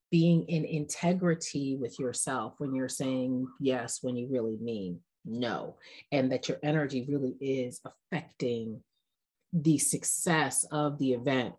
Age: 30-49